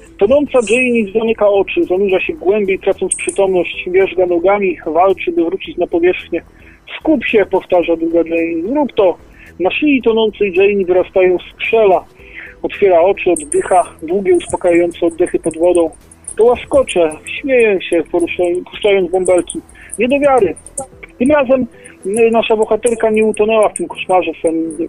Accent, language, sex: native, Polish, male